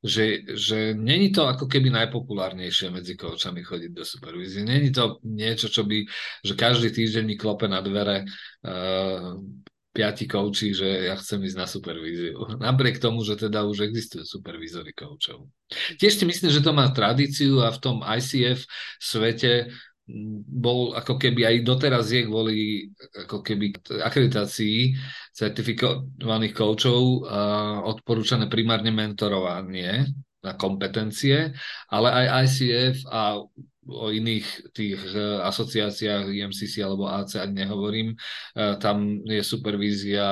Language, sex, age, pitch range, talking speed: Czech, male, 40-59, 100-120 Hz, 125 wpm